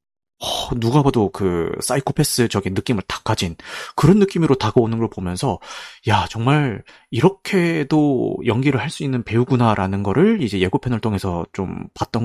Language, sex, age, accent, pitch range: Korean, male, 30-49, native, 105-160 Hz